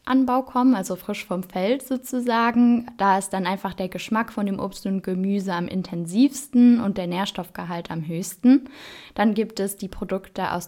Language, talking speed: German, 165 wpm